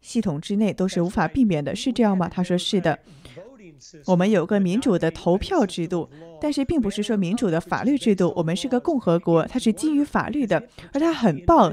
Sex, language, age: female, Chinese, 20-39